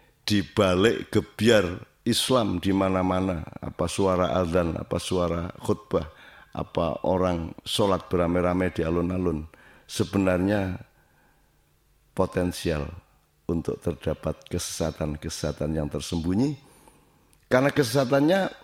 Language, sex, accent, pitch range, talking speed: Indonesian, male, native, 85-120 Hz, 85 wpm